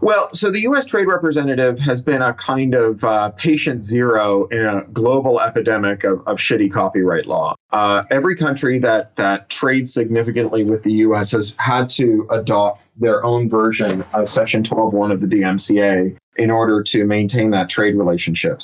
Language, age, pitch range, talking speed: English, 30-49, 105-130 Hz, 170 wpm